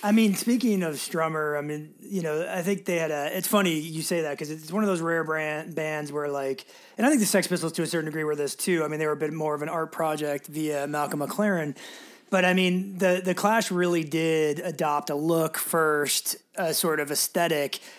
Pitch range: 150-170 Hz